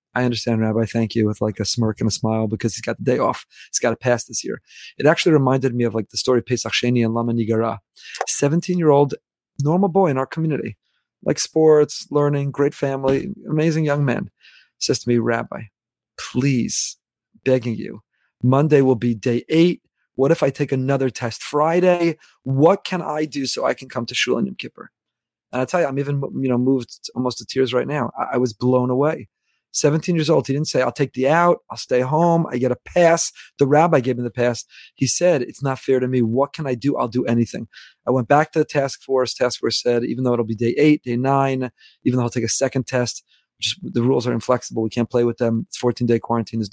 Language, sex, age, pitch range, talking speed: English, male, 30-49, 120-145 Hz, 230 wpm